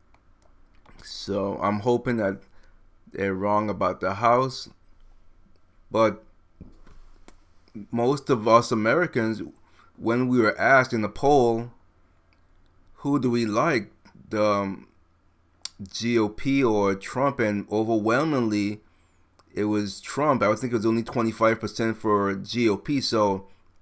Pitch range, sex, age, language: 95-115 Hz, male, 30-49, English